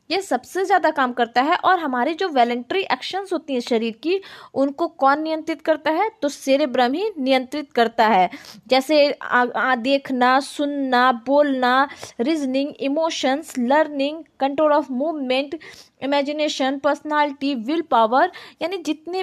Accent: native